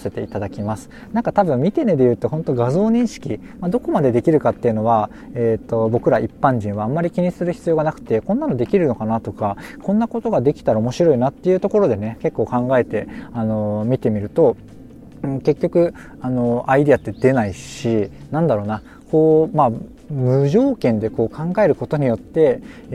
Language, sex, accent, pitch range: Japanese, male, native, 115-170 Hz